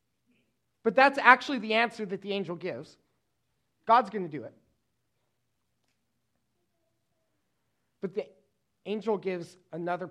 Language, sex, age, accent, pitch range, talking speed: English, male, 30-49, American, 140-205 Hz, 115 wpm